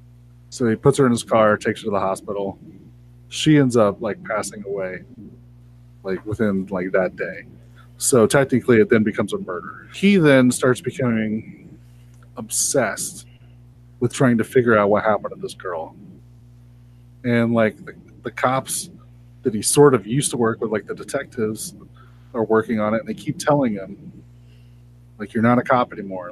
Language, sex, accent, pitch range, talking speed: English, male, American, 110-125 Hz, 175 wpm